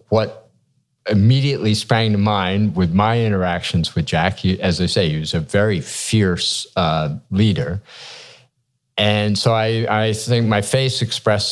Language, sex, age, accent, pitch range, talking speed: English, male, 50-69, American, 95-120 Hz, 145 wpm